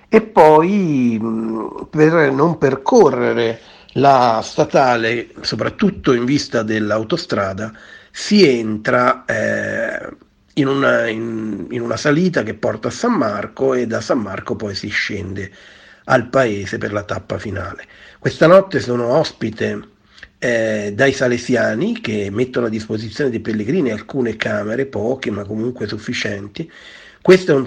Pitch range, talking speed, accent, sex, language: 105-135 Hz, 125 wpm, native, male, Italian